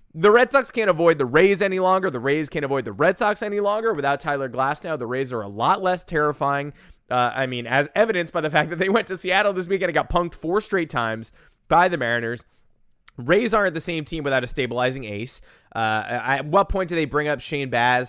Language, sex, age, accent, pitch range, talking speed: English, male, 20-39, American, 125-195 Hz, 240 wpm